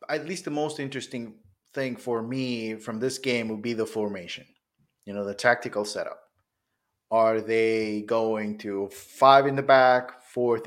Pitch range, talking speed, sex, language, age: 105-135 Hz, 165 wpm, male, English, 30-49